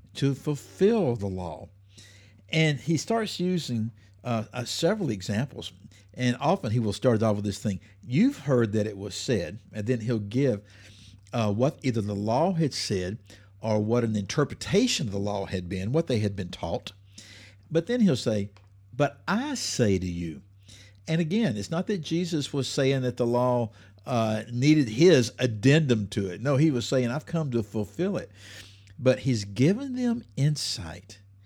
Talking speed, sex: 175 wpm, male